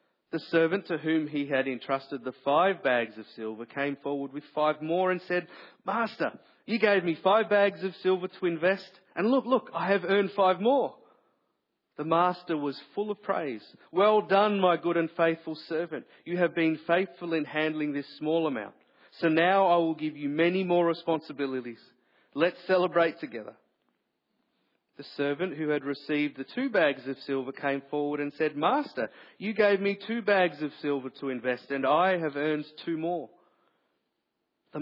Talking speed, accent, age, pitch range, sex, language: 175 wpm, Australian, 40-59, 145-185 Hz, male, English